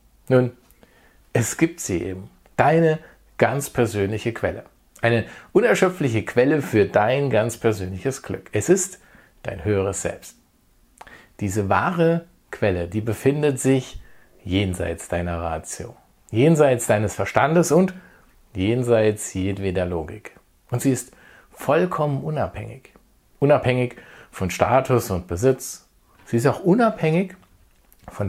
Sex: male